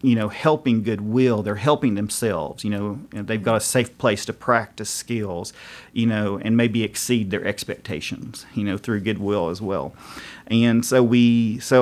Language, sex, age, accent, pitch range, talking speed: English, male, 40-59, American, 105-125 Hz, 180 wpm